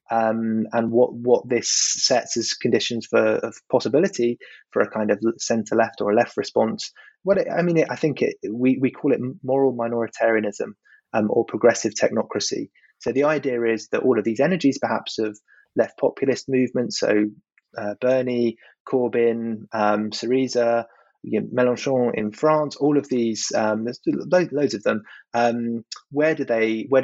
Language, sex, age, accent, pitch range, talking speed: English, male, 20-39, British, 110-130 Hz, 170 wpm